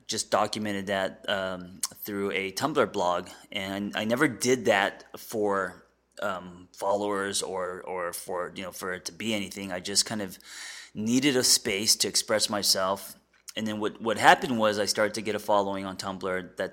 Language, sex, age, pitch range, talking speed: English, male, 20-39, 95-110 Hz, 185 wpm